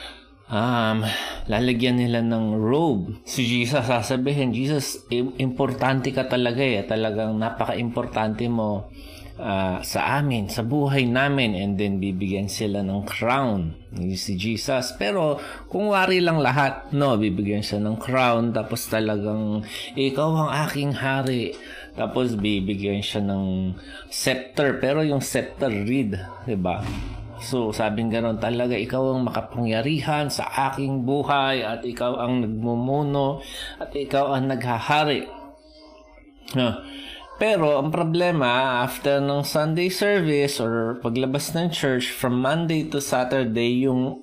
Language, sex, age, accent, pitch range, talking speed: Filipino, male, 20-39, native, 110-140 Hz, 125 wpm